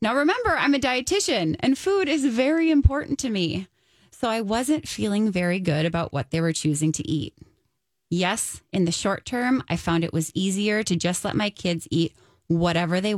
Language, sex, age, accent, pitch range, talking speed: English, female, 20-39, American, 170-240 Hz, 195 wpm